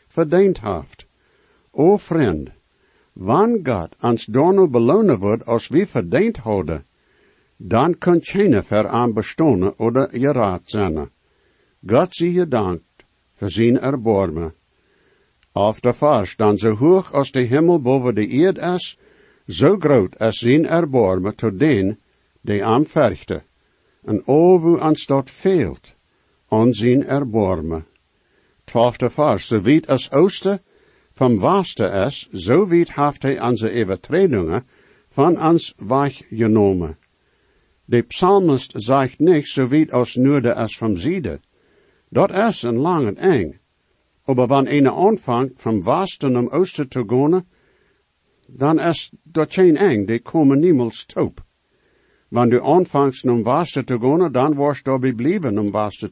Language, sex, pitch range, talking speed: English, male, 110-155 Hz, 130 wpm